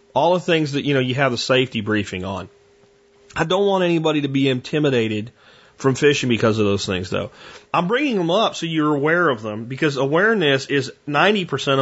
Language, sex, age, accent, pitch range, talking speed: English, male, 30-49, American, 125-175 Hz, 205 wpm